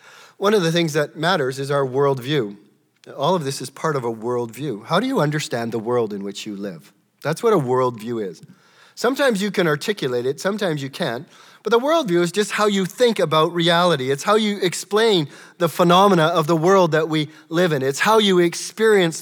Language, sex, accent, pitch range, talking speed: English, male, American, 150-205 Hz, 210 wpm